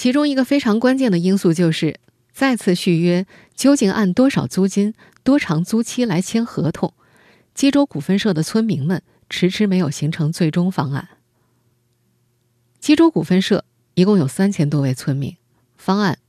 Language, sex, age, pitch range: Chinese, female, 20-39, 150-205 Hz